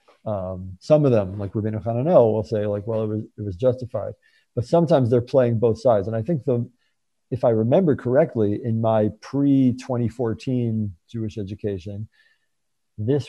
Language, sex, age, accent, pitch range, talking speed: English, male, 50-69, American, 105-125 Hz, 165 wpm